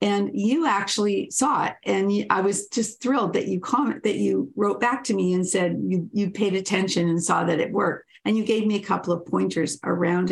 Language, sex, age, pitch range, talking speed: English, female, 50-69, 170-215 Hz, 220 wpm